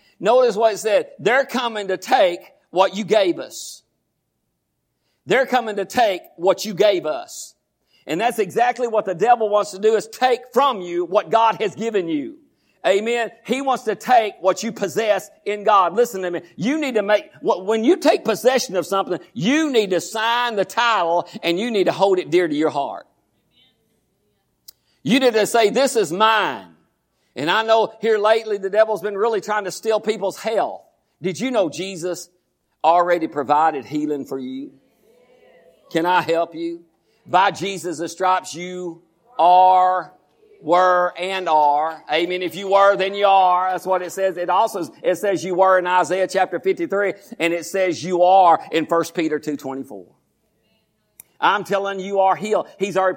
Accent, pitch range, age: American, 180-225 Hz, 50-69